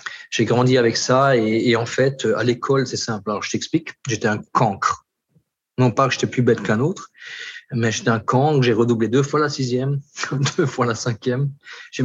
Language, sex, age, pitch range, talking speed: French, male, 40-59, 115-140 Hz, 205 wpm